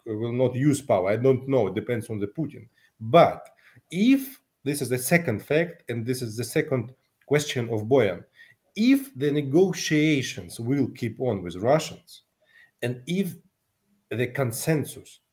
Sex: male